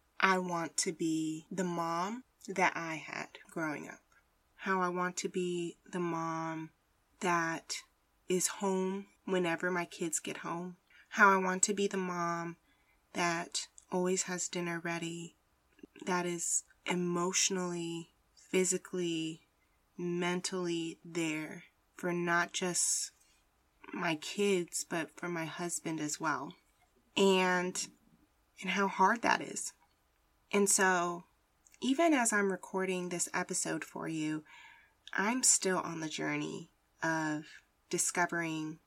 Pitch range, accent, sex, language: 165-190 Hz, American, female, English